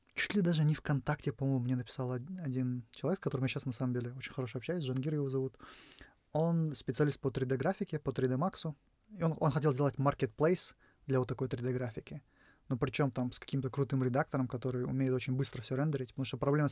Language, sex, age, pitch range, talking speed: Russian, male, 20-39, 125-145 Hz, 195 wpm